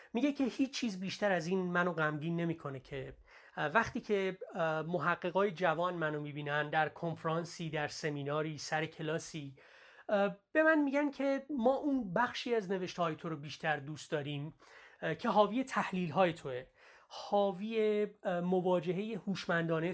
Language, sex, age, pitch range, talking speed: Persian, male, 30-49, 155-200 Hz, 135 wpm